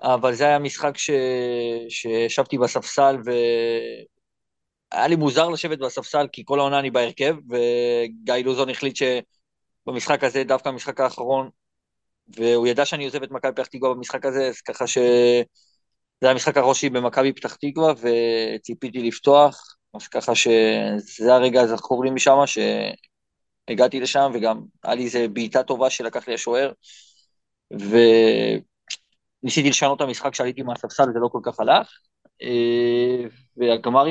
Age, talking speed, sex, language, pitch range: 20-39, 135 wpm, male, Hebrew, 115-140 Hz